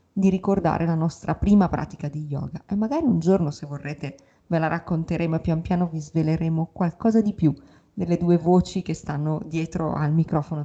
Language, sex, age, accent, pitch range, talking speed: Italian, female, 30-49, native, 160-205 Hz, 185 wpm